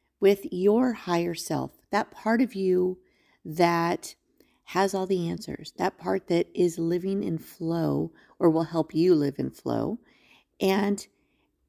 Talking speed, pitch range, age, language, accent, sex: 145 wpm, 170-215 Hz, 40-59, English, American, female